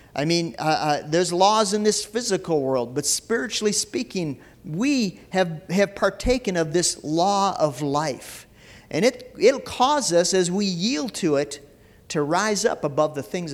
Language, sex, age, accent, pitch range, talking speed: English, male, 50-69, American, 175-235 Hz, 170 wpm